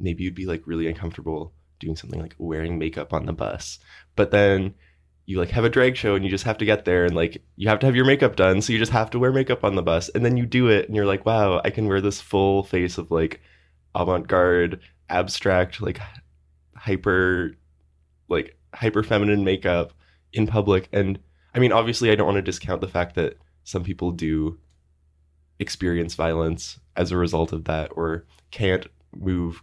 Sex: male